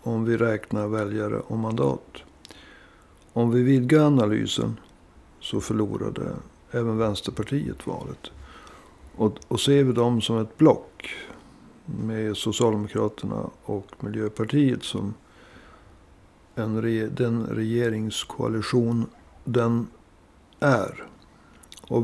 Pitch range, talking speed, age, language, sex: 105-125 Hz, 95 wpm, 60-79, Swedish, male